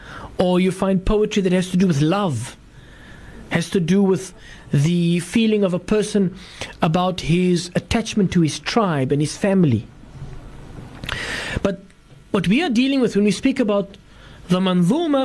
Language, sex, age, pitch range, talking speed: English, male, 50-69, 165-230 Hz, 155 wpm